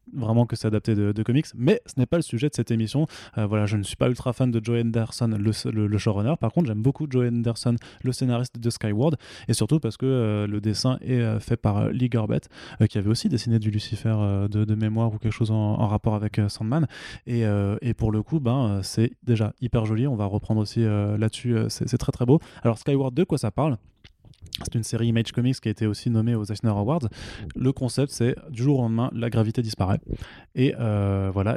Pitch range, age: 105-125 Hz, 20-39